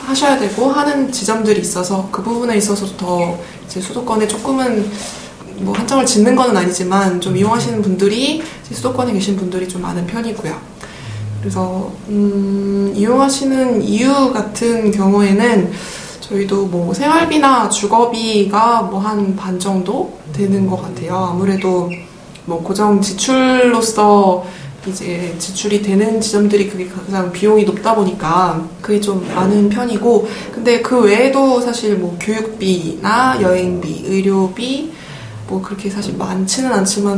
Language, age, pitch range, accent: Korean, 20-39, 185-225 Hz, native